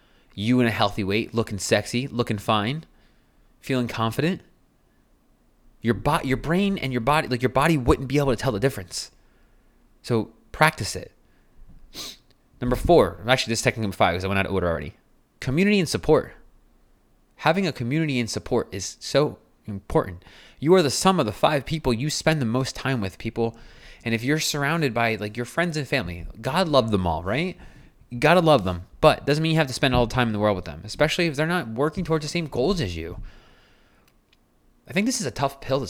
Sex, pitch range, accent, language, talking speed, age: male, 110-155 Hz, American, English, 210 wpm, 30-49